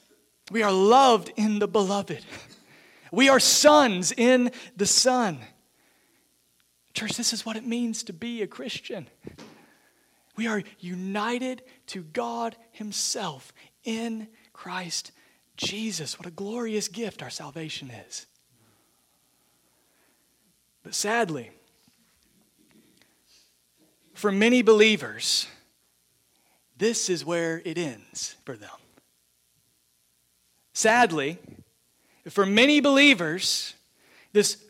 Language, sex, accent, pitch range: English, male, American, 180-245 Hz